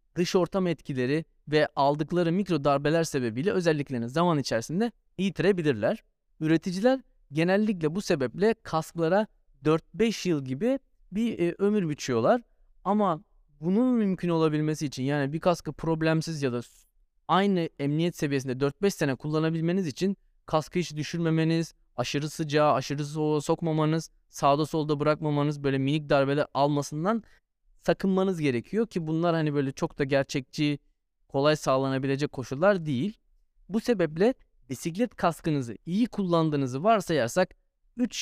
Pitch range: 145-195 Hz